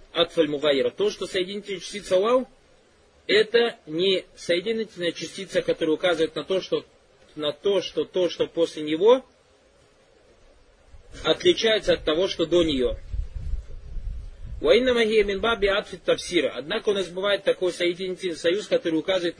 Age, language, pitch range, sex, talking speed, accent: 30-49, Russian, 160-230 Hz, male, 130 wpm, native